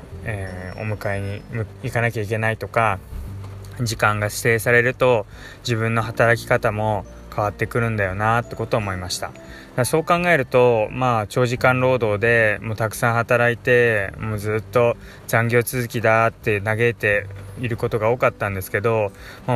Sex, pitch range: male, 100-120 Hz